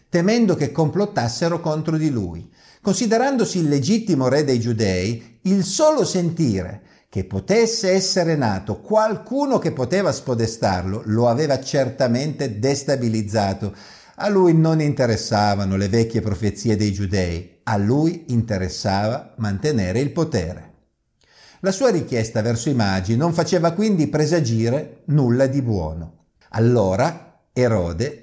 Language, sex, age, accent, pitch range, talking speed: Italian, male, 50-69, native, 115-175 Hz, 120 wpm